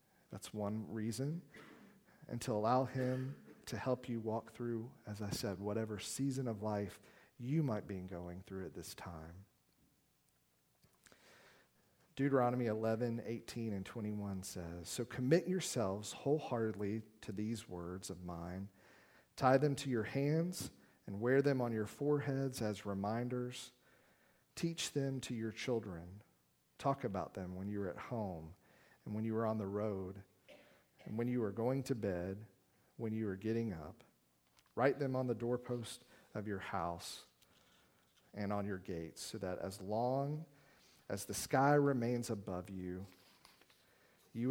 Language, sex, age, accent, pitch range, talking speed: English, male, 40-59, American, 95-125 Hz, 150 wpm